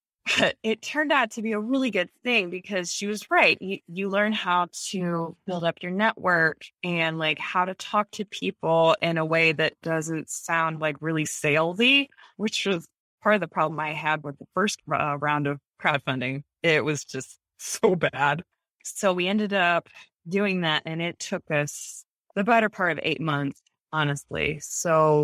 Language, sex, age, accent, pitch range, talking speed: English, female, 20-39, American, 155-190 Hz, 185 wpm